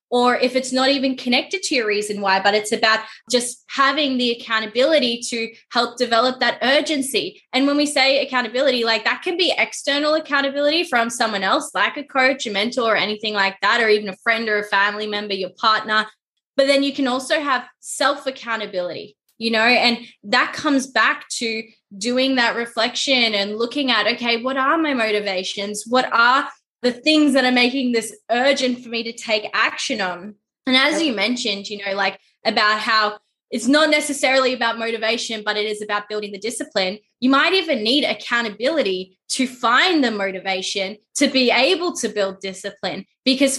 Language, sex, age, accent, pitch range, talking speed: English, female, 10-29, Australian, 210-270 Hz, 180 wpm